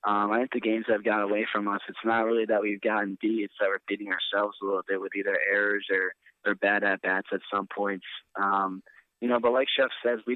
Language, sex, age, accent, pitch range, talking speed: English, male, 20-39, American, 100-110 Hz, 250 wpm